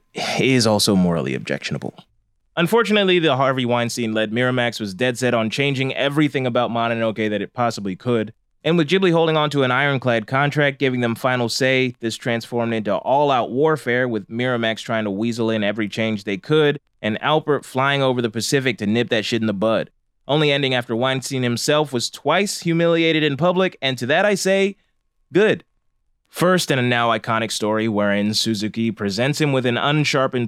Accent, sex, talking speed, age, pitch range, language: American, male, 180 wpm, 20-39, 115-145 Hz, English